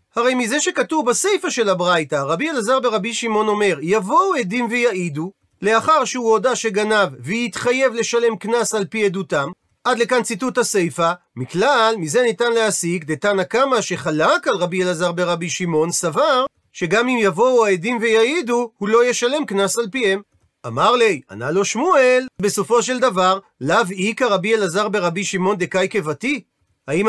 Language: Hebrew